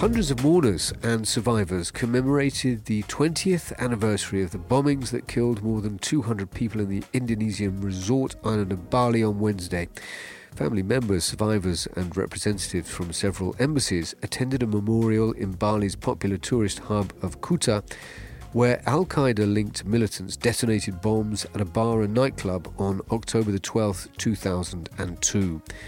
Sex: male